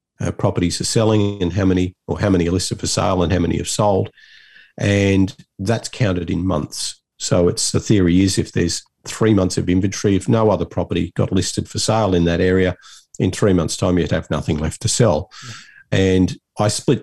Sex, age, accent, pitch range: male, 50-69, Australian, 90-110 Hz